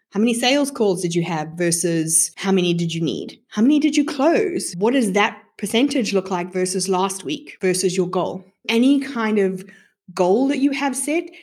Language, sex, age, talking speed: English, female, 20-39, 200 wpm